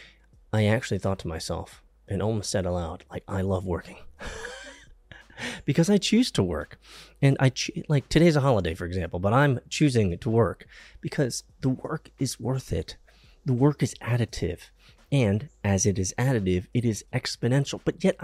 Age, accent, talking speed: 30-49, American, 170 wpm